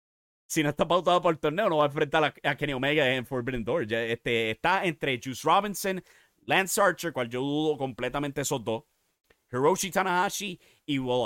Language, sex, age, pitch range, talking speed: English, male, 30-49, 115-150 Hz, 180 wpm